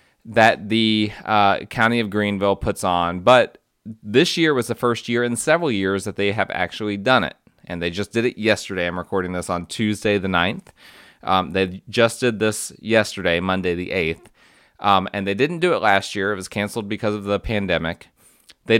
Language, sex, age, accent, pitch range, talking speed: English, male, 30-49, American, 95-115 Hz, 200 wpm